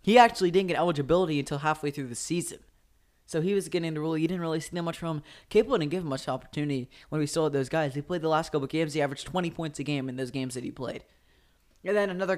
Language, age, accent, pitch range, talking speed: English, 10-29, American, 140-165 Hz, 275 wpm